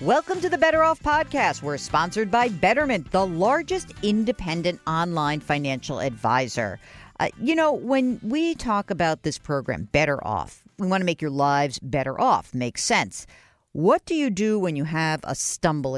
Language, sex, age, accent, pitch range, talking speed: English, female, 50-69, American, 150-215 Hz, 175 wpm